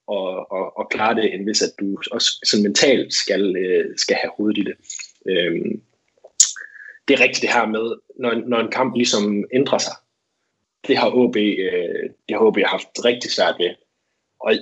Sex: male